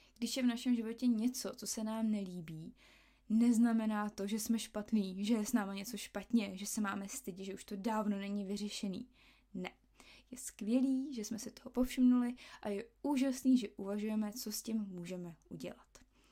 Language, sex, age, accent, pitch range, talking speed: Czech, female, 20-39, native, 205-245 Hz, 180 wpm